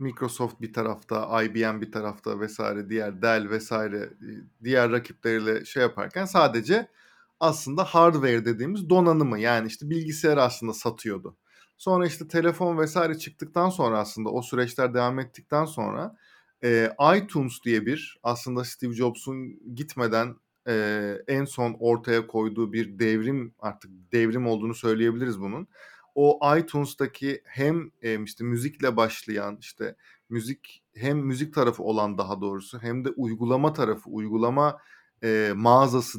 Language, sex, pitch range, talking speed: Turkish, male, 115-140 Hz, 130 wpm